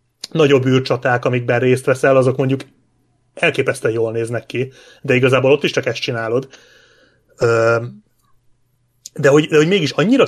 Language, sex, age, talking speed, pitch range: Hungarian, male, 30-49, 140 wpm, 120-145 Hz